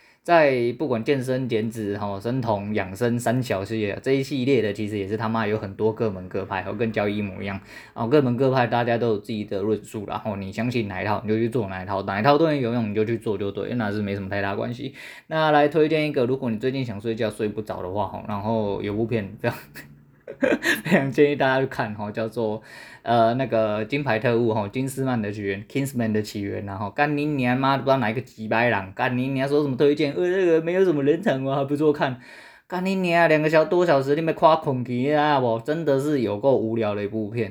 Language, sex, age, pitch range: Chinese, male, 20-39, 110-140 Hz